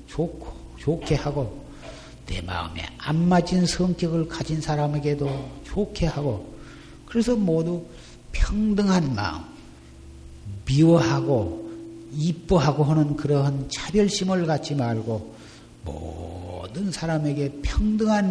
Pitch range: 110-165 Hz